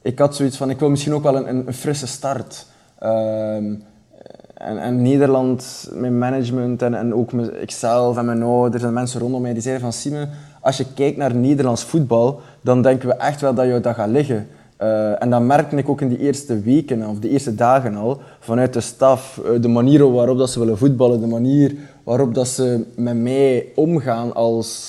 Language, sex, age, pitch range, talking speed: Dutch, male, 20-39, 115-140 Hz, 205 wpm